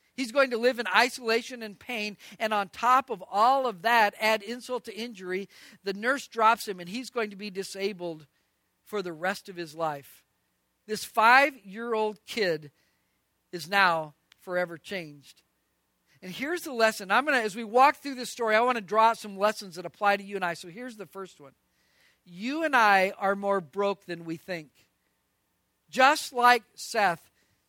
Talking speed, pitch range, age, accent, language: 180 wpm, 195-250 Hz, 50-69, American, English